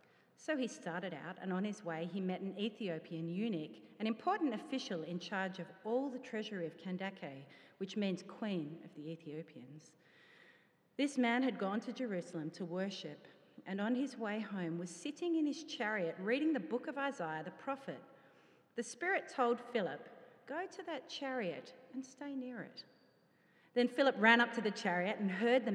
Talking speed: 180 wpm